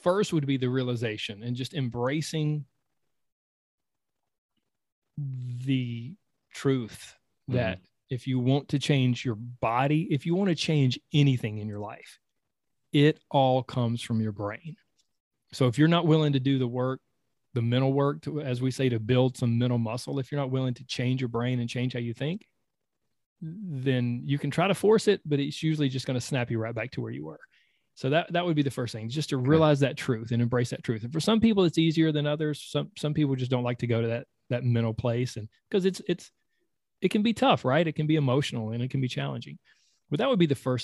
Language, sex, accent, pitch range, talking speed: English, male, American, 125-155 Hz, 215 wpm